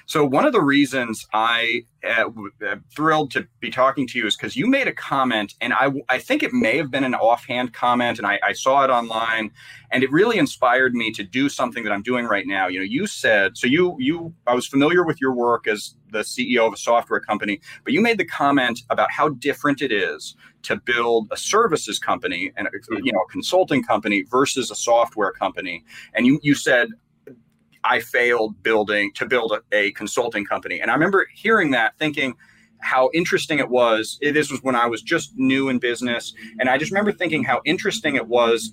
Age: 30-49